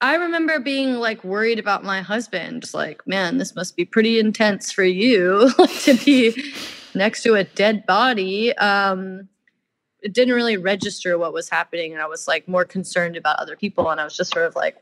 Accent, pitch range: American, 185-235 Hz